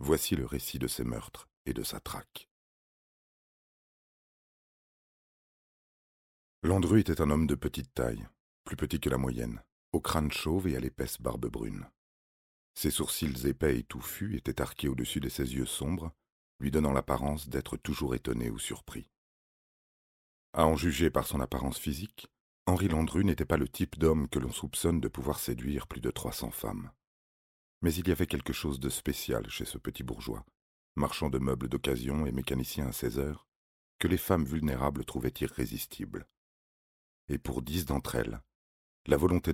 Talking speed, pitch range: 165 wpm, 65-80 Hz